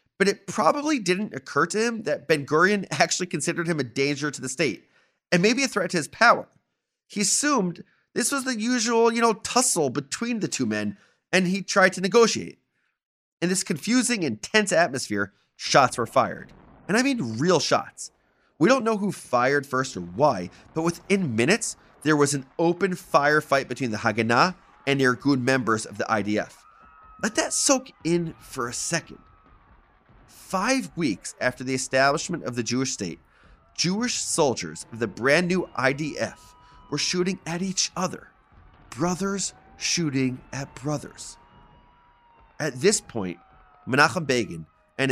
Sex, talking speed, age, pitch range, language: male, 155 wpm, 30-49, 125-195 Hz, English